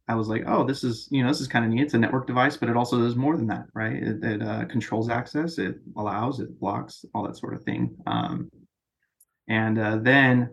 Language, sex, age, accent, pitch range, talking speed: English, male, 20-39, American, 110-125 Hz, 245 wpm